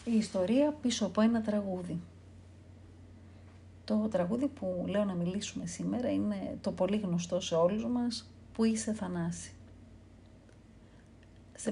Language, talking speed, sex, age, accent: Greek, 125 wpm, female, 40-59, native